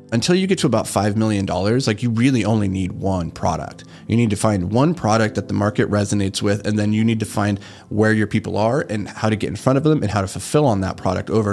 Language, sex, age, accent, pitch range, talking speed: English, male, 30-49, American, 100-115 Hz, 270 wpm